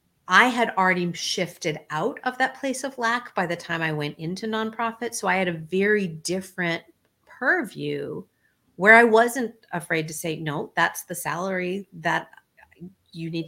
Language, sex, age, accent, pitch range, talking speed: English, female, 40-59, American, 155-190 Hz, 165 wpm